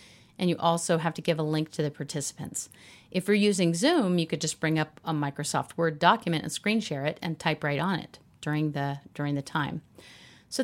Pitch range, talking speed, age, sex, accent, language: 155-220 Hz, 215 wpm, 40-59, female, American, English